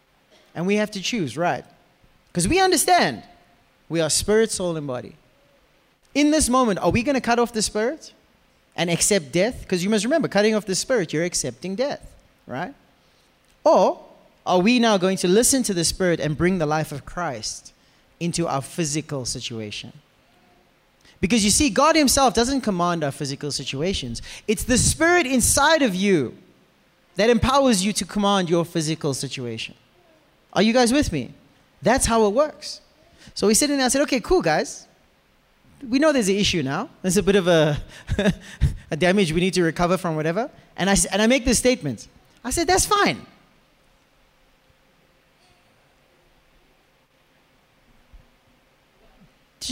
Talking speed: 165 wpm